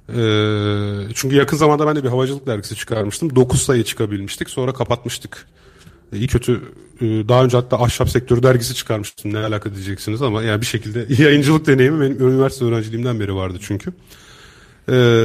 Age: 40-59